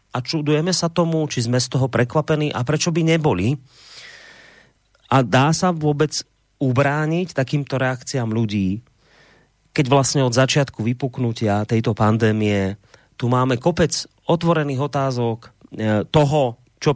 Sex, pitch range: male, 110-135 Hz